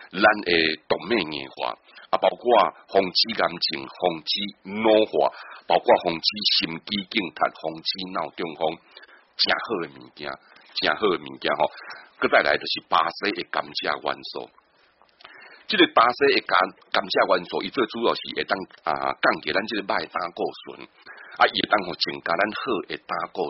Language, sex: Chinese, male